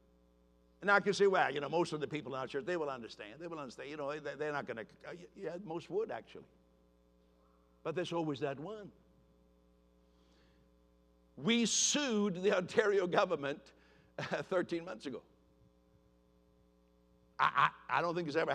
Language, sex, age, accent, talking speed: English, male, 60-79, American, 165 wpm